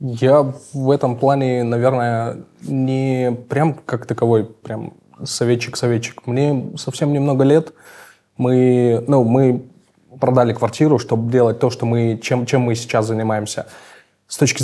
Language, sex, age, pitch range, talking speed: Russian, male, 20-39, 115-130 Hz, 130 wpm